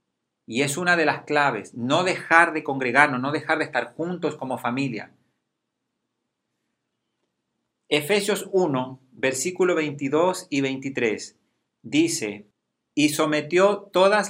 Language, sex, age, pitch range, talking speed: Spanish, male, 40-59, 135-175 Hz, 115 wpm